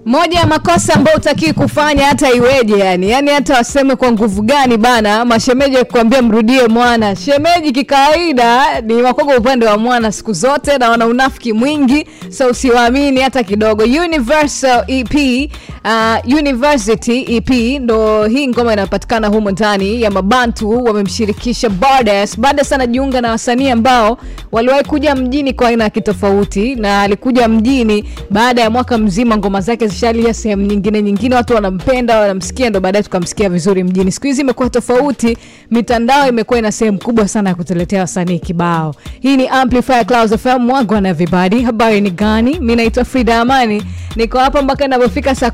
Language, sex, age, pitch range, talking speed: English, female, 20-39, 210-260 Hz, 160 wpm